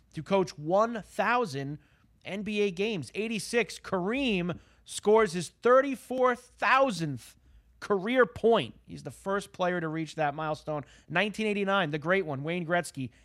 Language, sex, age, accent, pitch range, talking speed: English, male, 30-49, American, 160-220 Hz, 120 wpm